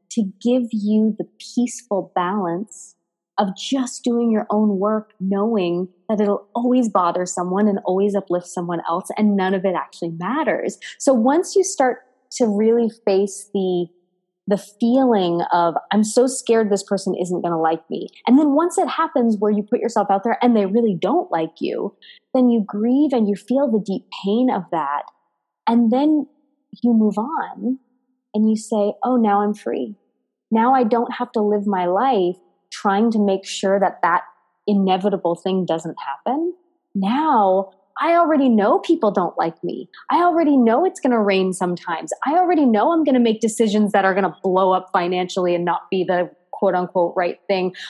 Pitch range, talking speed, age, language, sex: 185-245 Hz, 185 wpm, 20-39, English, female